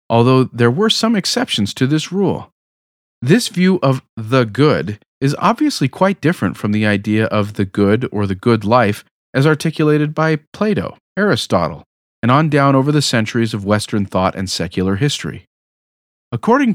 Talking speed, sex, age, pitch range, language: 160 wpm, male, 40-59, 110-155 Hz, English